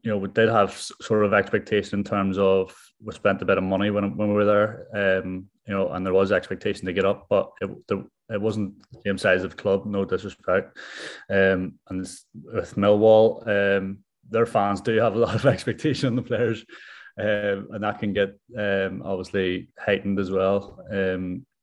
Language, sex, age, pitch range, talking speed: English, male, 20-39, 95-105 Hz, 205 wpm